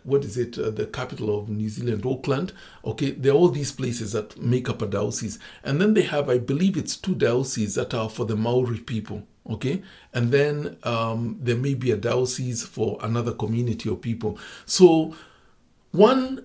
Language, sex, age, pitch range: English, male, 60-79, 110-135 Hz